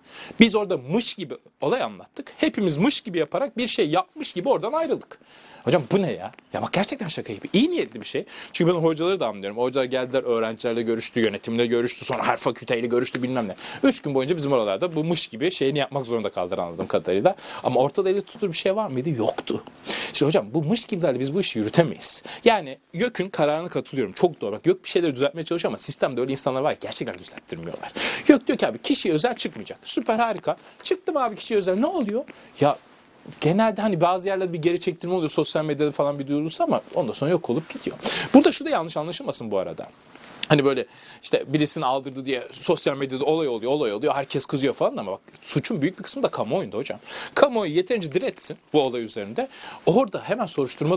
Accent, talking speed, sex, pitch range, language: native, 205 wpm, male, 140-225 Hz, Turkish